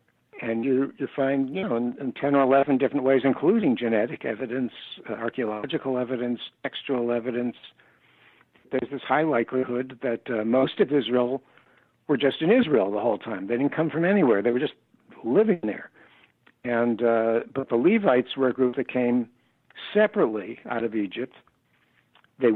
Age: 60-79